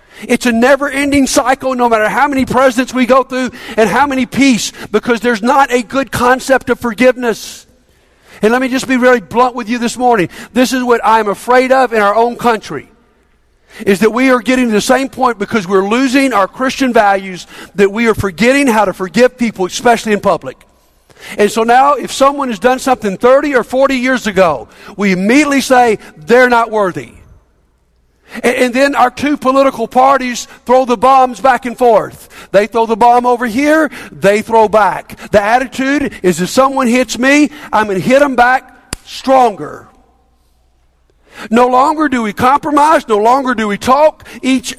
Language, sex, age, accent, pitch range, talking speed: English, male, 50-69, American, 215-265 Hz, 180 wpm